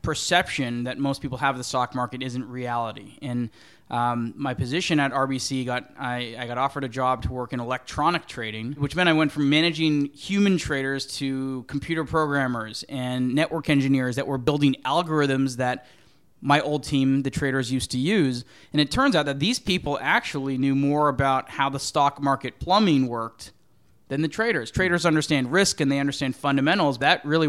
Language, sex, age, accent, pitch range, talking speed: English, male, 20-39, American, 125-150 Hz, 185 wpm